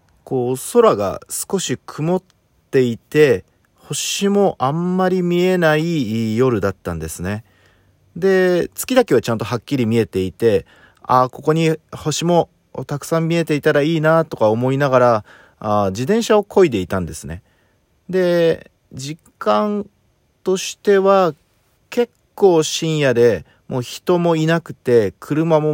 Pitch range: 105-165 Hz